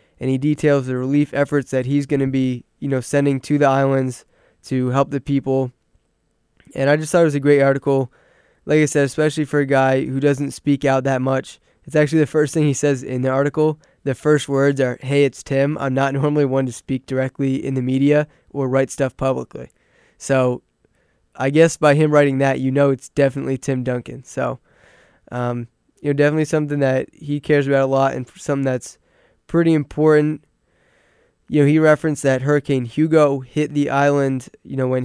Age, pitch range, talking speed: 20-39, 130-145 Hz, 200 wpm